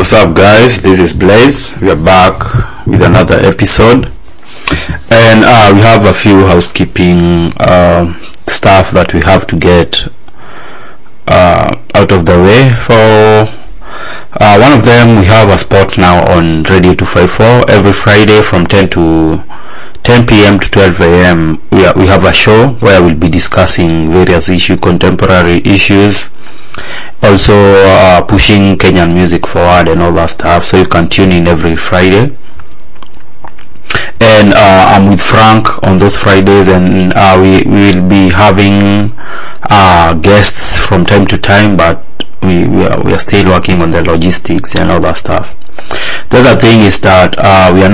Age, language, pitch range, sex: 30-49, English, 90-105 Hz, male